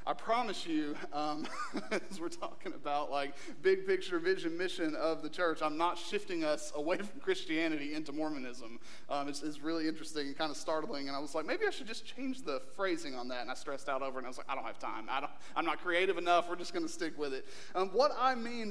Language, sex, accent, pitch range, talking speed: English, male, American, 160-230 Hz, 250 wpm